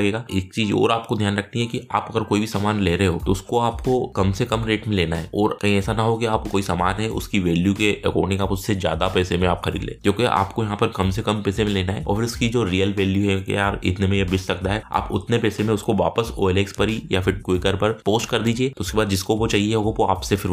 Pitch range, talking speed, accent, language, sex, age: 95-110 Hz, 120 wpm, native, Hindi, male, 20-39